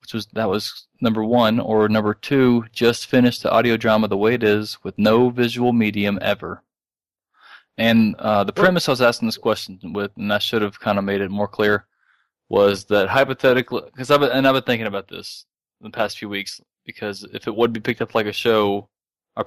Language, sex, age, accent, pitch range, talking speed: English, male, 20-39, American, 100-115 Hz, 215 wpm